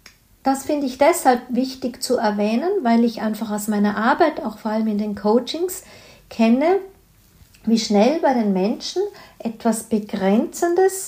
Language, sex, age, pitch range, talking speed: German, female, 50-69, 215-250 Hz, 145 wpm